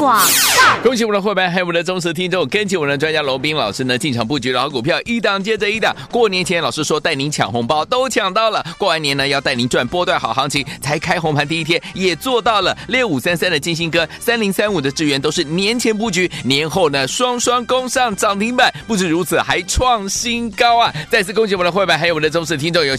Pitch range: 150-215 Hz